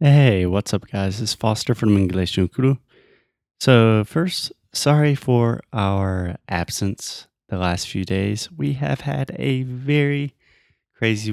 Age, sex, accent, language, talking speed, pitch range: 30-49, male, American, Portuguese, 130 wpm, 100-125 Hz